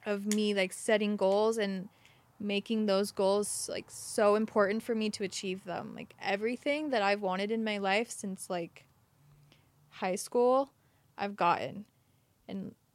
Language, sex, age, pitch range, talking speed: English, female, 20-39, 190-215 Hz, 150 wpm